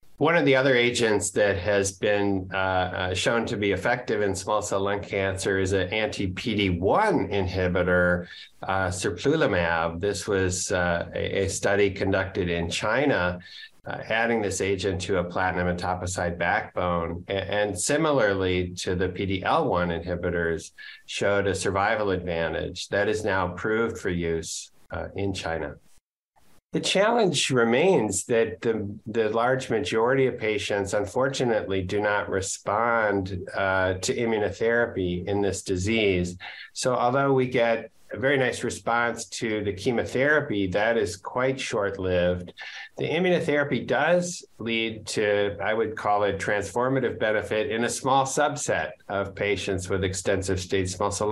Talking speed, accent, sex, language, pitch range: 145 wpm, American, male, English, 95-115 Hz